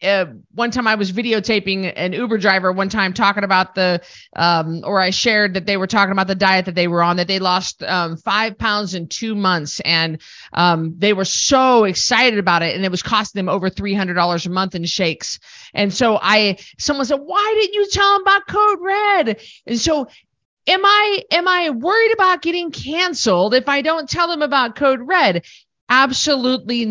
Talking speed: 200 wpm